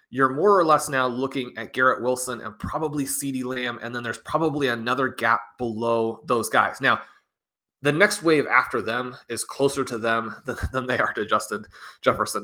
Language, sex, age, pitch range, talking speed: English, male, 20-39, 115-135 Hz, 190 wpm